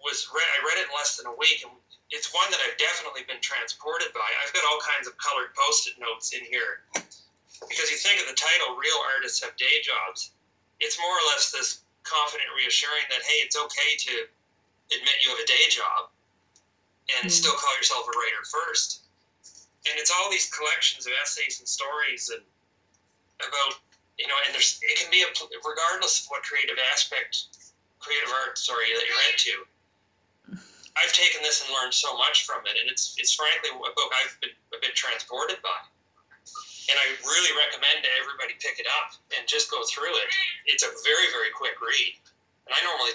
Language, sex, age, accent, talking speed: English, male, 30-49, American, 195 wpm